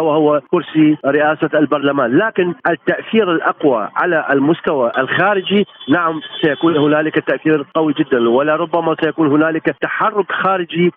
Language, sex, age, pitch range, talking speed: Arabic, male, 40-59, 140-165 Hz, 120 wpm